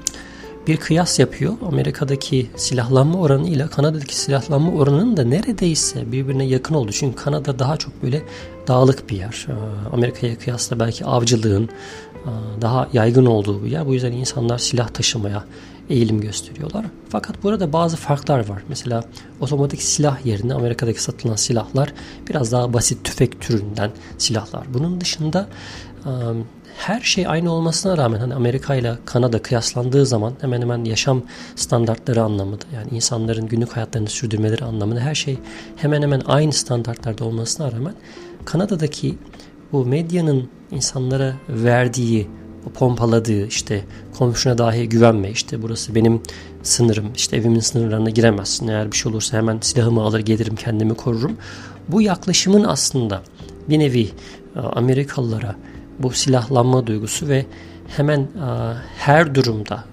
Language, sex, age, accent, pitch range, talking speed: Turkish, male, 40-59, native, 110-140 Hz, 130 wpm